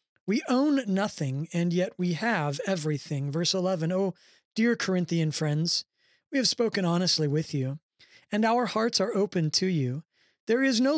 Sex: male